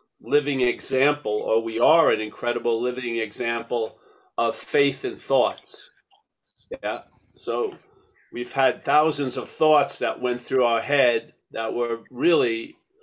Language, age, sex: English, 50-69, male